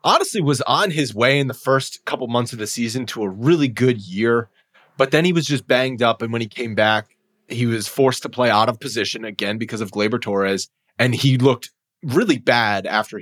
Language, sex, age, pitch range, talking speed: English, male, 20-39, 115-145 Hz, 225 wpm